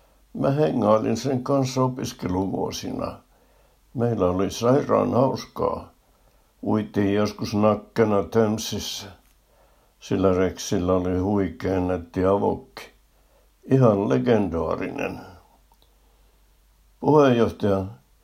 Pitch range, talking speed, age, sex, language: 90-120 Hz, 70 wpm, 60-79, male, Finnish